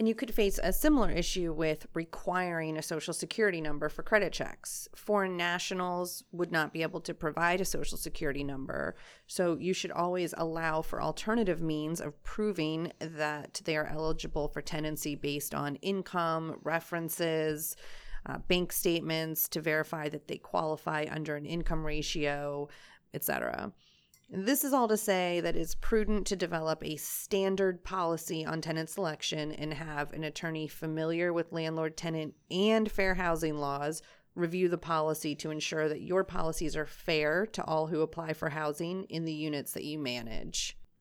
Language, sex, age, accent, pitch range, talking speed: English, female, 30-49, American, 155-185 Hz, 160 wpm